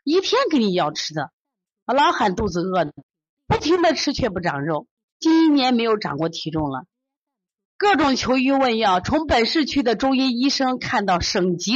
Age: 30-49